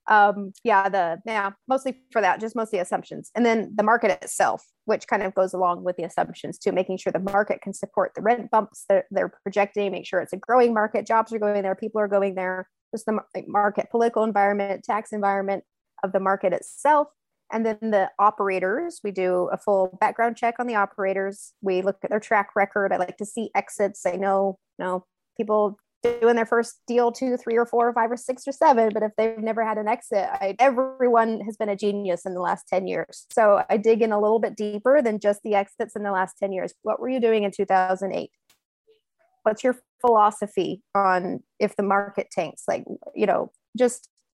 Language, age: English, 30-49